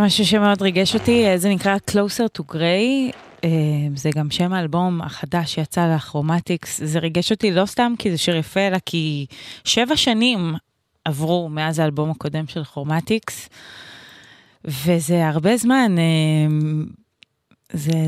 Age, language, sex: 20-39, Hebrew, female